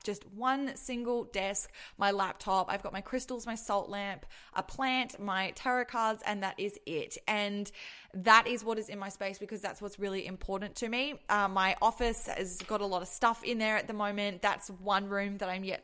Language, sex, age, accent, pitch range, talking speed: English, female, 20-39, Australian, 185-210 Hz, 215 wpm